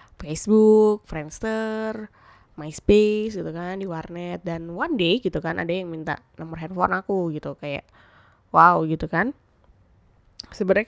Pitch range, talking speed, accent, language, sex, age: 165-205 Hz, 130 wpm, native, Indonesian, female, 10-29